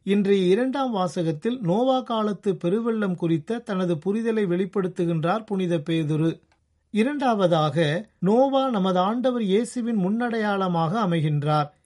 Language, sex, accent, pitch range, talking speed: Tamil, male, native, 170-220 Hz, 95 wpm